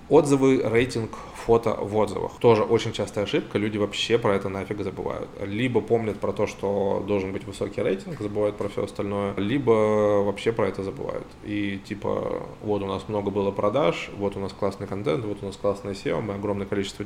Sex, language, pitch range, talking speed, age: male, Russian, 100-115 Hz, 190 wpm, 20-39